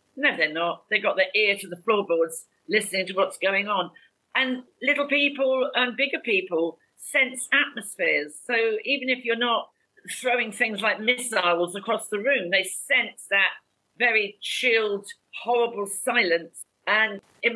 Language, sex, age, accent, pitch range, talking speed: English, female, 50-69, British, 190-255 Hz, 150 wpm